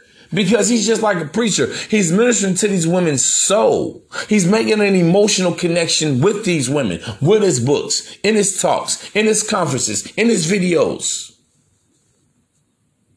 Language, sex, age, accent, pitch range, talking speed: English, male, 40-59, American, 155-205 Hz, 145 wpm